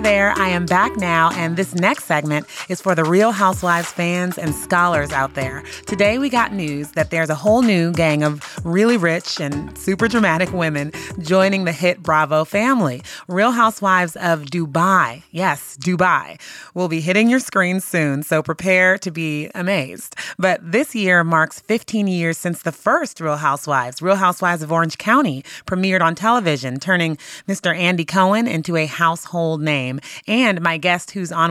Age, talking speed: 30-49, 170 wpm